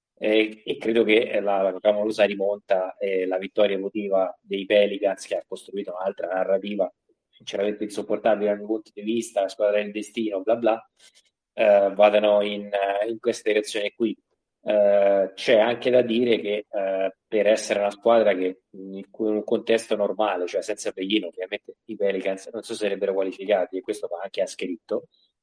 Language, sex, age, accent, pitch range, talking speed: Italian, male, 20-39, native, 95-110 Hz, 170 wpm